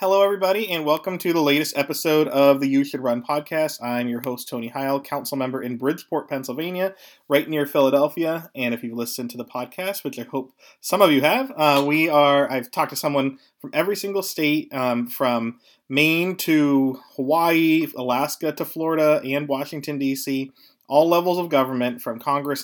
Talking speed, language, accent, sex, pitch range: 180 wpm, English, American, male, 135-165 Hz